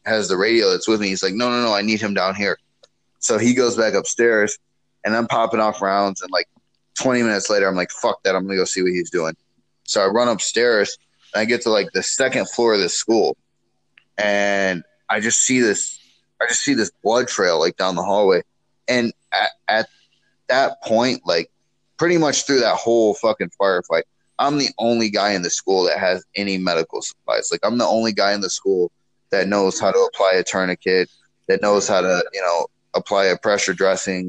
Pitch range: 95-115 Hz